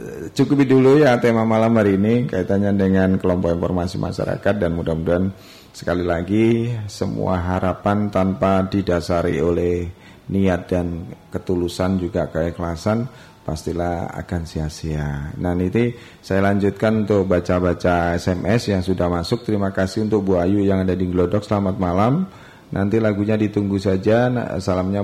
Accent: native